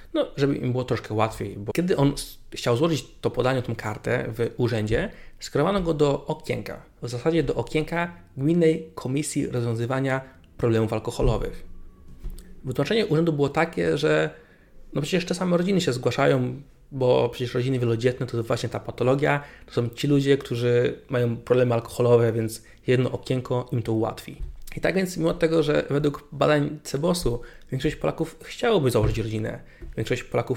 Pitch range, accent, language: 120-150 Hz, native, Polish